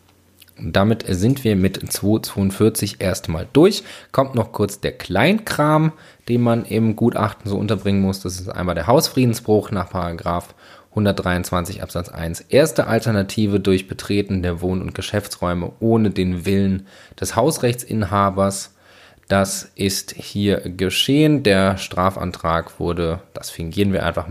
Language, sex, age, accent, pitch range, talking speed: German, male, 20-39, German, 90-110 Hz, 130 wpm